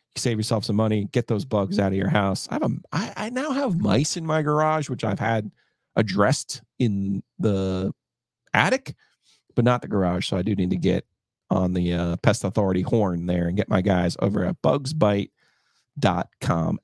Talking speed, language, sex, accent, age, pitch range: 190 wpm, English, male, American, 40-59, 95-125 Hz